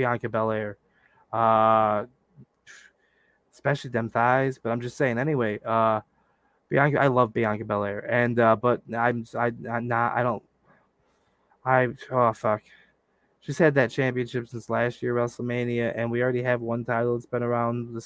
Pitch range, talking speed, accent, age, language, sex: 115-140 Hz, 160 wpm, American, 20-39, English, male